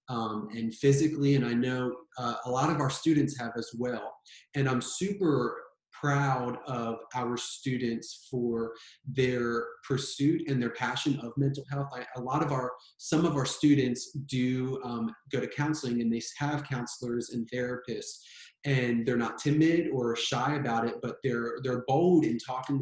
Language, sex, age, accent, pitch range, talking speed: English, male, 30-49, American, 120-145 Hz, 170 wpm